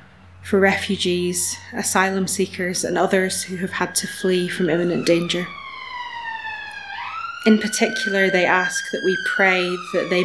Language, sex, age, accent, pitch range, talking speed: English, female, 30-49, British, 175-195 Hz, 135 wpm